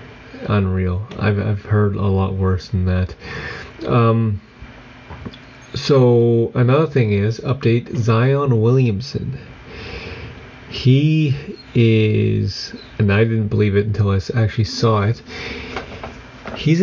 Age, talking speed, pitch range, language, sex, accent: 30-49, 105 wpm, 105-125 Hz, English, male, American